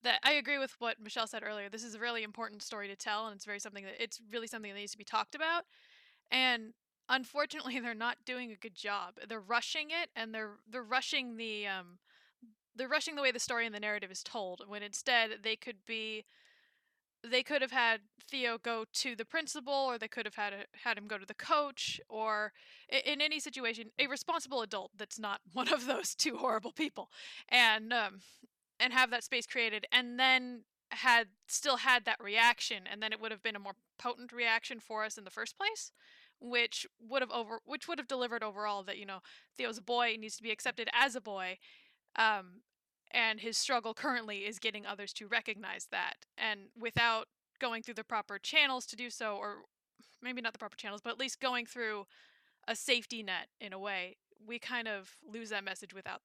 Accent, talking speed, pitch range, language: American, 210 wpm, 215-255 Hz, English